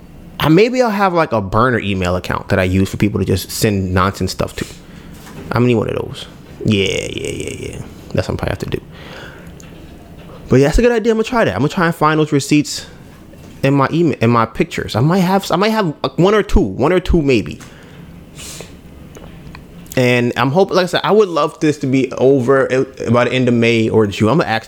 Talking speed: 235 wpm